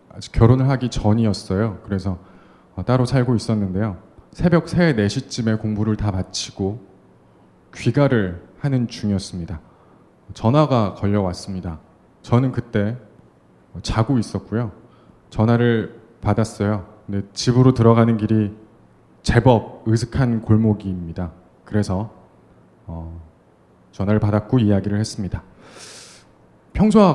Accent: native